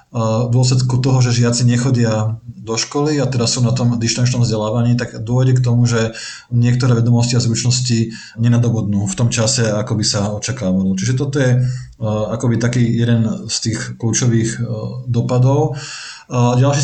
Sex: male